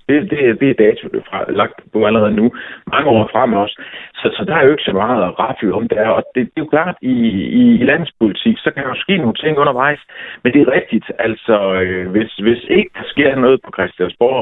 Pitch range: 105-150 Hz